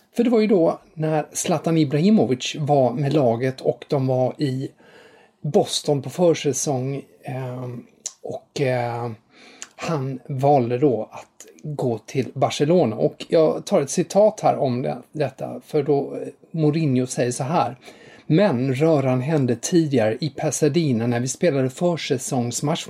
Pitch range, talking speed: 130-170 Hz, 130 wpm